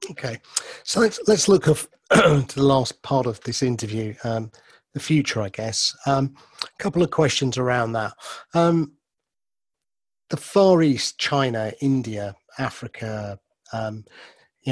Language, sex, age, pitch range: English, male, 40-59, 115-145 Hz